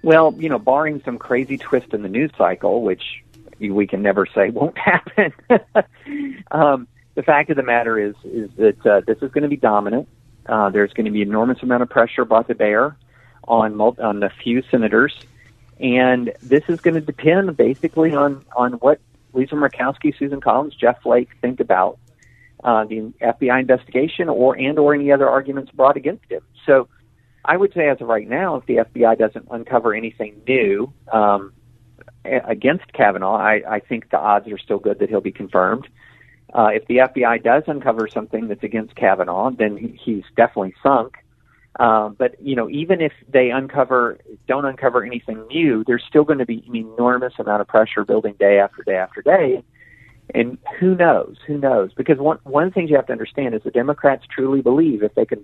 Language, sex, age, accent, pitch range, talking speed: English, male, 50-69, American, 115-145 Hz, 190 wpm